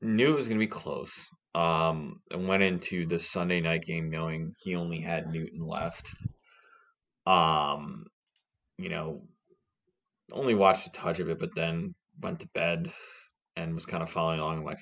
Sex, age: male, 20-39